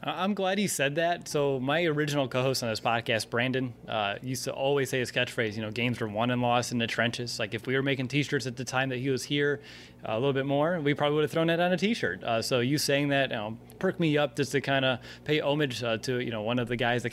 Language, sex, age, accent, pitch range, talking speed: English, male, 30-49, American, 120-150 Hz, 285 wpm